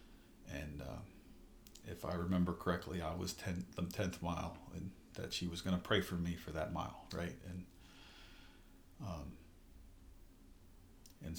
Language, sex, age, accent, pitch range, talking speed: English, male, 40-59, American, 85-110 Hz, 140 wpm